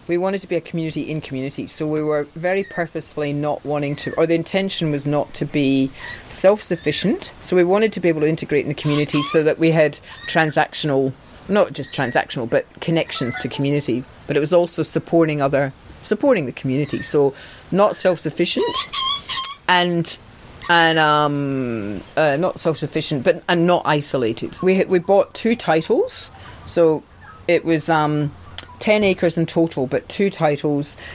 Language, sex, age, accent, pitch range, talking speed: English, female, 40-59, British, 140-170 Hz, 165 wpm